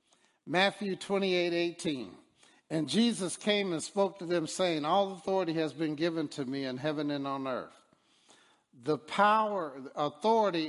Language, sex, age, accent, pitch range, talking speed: English, male, 60-79, American, 135-175 Hz, 145 wpm